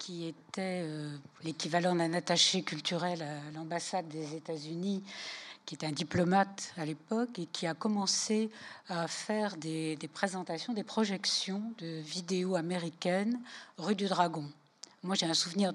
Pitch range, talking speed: 160-195 Hz, 145 wpm